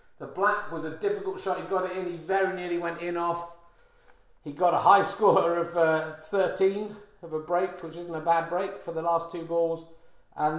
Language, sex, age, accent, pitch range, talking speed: English, male, 30-49, British, 125-165 Hz, 215 wpm